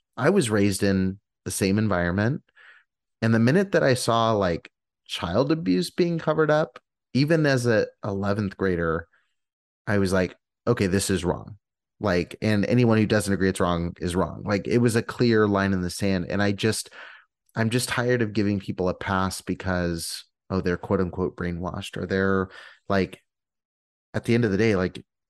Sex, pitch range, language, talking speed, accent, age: male, 90-110 Hz, English, 185 wpm, American, 30-49